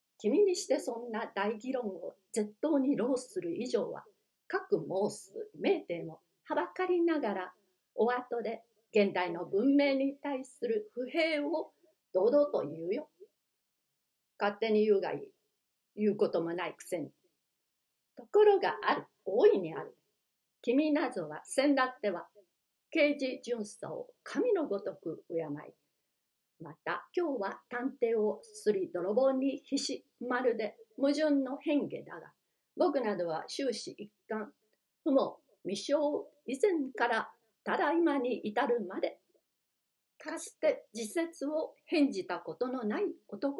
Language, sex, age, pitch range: Japanese, female, 60-79, 215-315 Hz